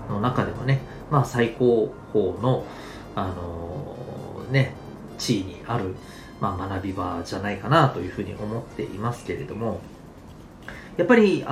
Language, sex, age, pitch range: Japanese, male, 40-59, 105-170 Hz